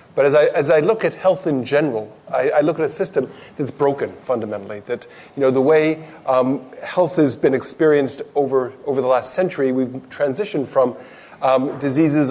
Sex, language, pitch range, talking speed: male, English, 130-150 Hz, 190 wpm